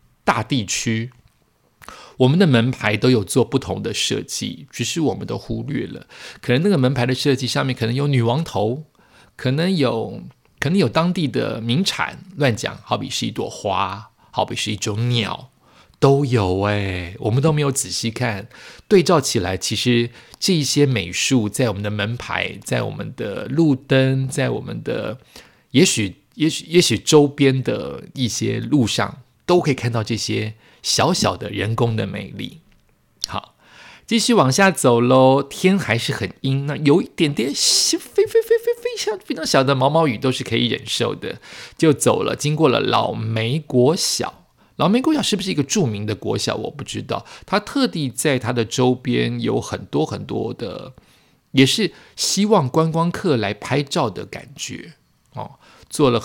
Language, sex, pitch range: Chinese, male, 115-160 Hz